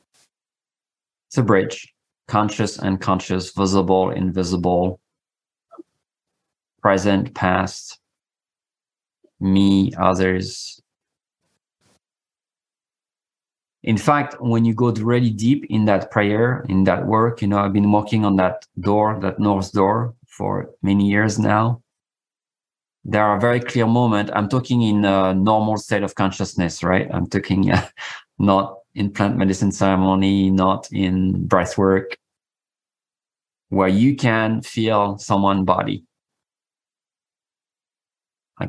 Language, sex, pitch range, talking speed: English, male, 95-110 Hz, 110 wpm